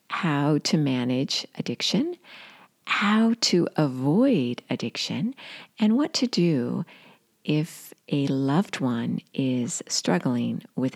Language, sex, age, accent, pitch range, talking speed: English, female, 50-69, American, 150-210 Hz, 105 wpm